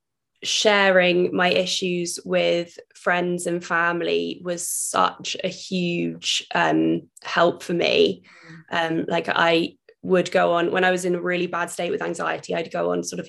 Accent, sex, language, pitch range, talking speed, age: British, female, English, 170-190 Hz, 165 wpm, 20-39